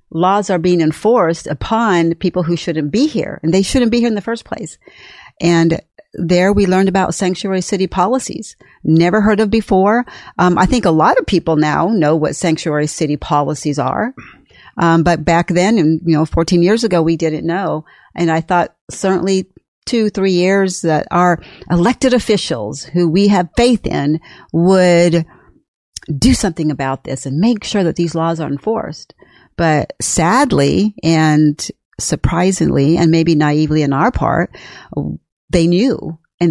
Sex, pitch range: female, 165-200 Hz